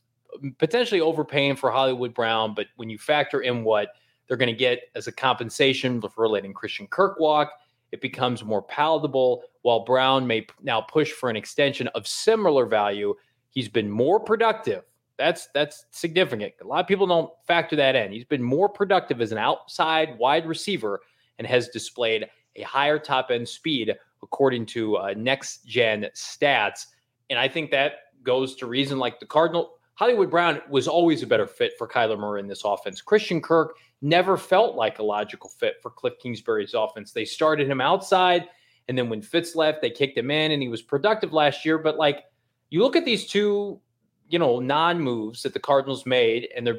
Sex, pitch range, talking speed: male, 120-165 Hz, 185 wpm